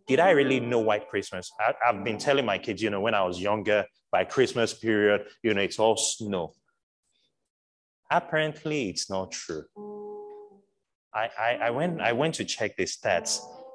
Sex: male